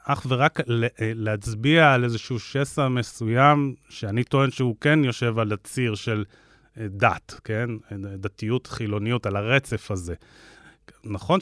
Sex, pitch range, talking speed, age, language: male, 115-145 Hz, 120 wpm, 30-49, Hebrew